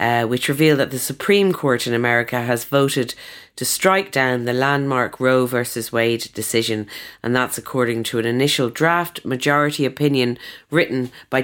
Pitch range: 115-135 Hz